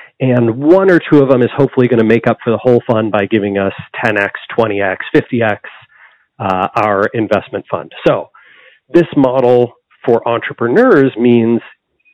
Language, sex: English, male